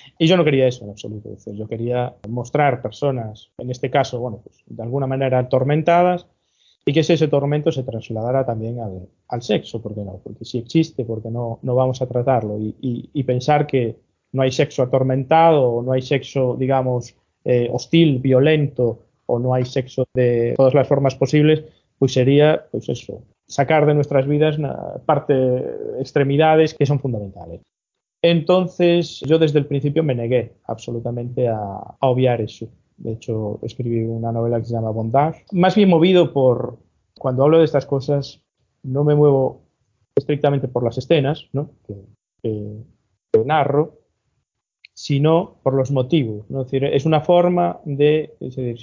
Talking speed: 160 wpm